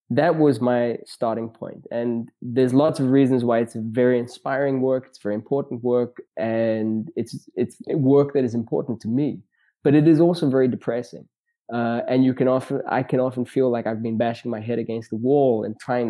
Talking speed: 205 wpm